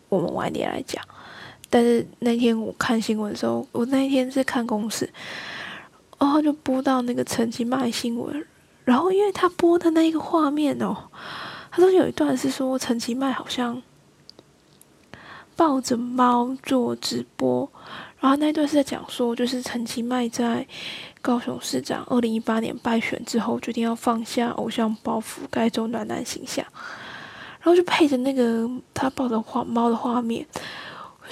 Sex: female